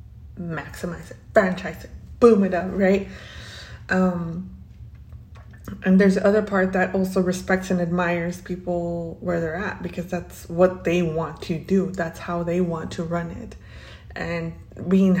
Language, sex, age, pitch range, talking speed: English, female, 20-39, 170-185 Hz, 150 wpm